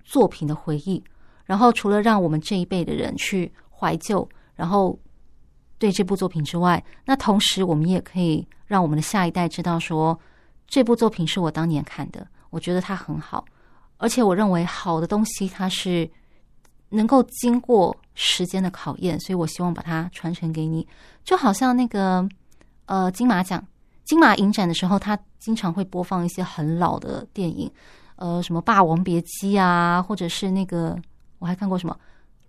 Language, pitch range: Chinese, 170-210 Hz